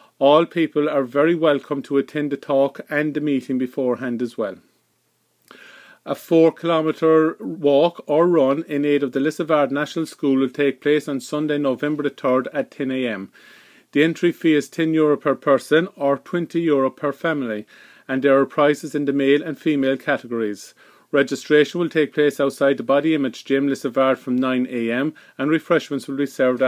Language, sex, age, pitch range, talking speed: English, male, 40-59, 135-155 Hz, 165 wpm